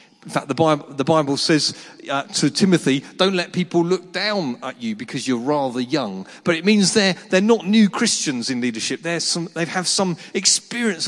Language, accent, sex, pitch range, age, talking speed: English, British, male, 170-230 Hz, 40-59, 195 wpm